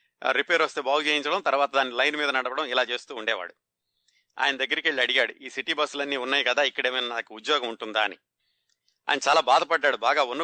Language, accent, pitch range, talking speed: Telugu, native, 115-145 Hz, 190 wpm